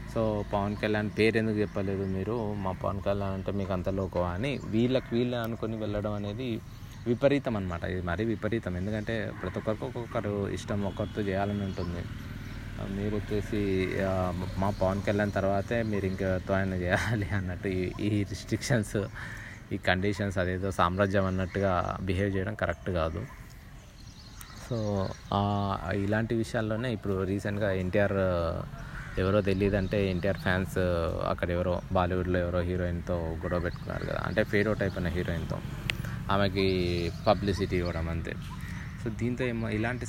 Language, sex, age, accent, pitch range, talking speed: Telugu, male, 20-39, native, 95-110 Hz, 125 wpm